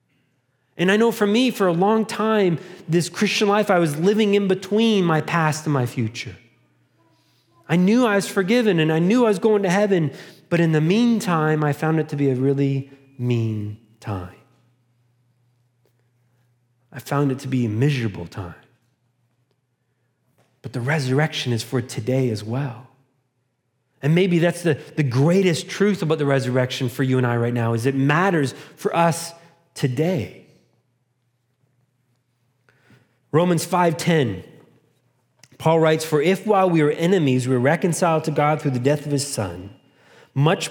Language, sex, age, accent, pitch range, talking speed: English, male, 30-49, American, 125-180 Hz, 160 wpm